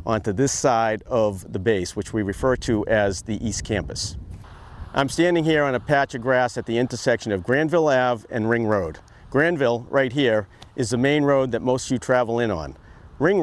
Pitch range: 105-140 Hz